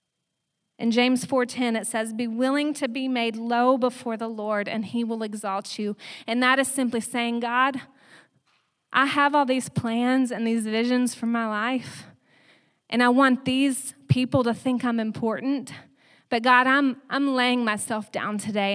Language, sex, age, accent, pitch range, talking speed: English, female, 30-49, American, 225-270 Hz, 170 wpm